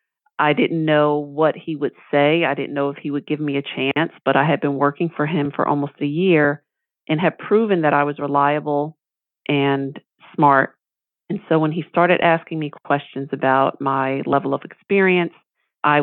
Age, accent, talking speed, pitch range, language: 40-59, American, 190 wpm, 140-160 Hz, English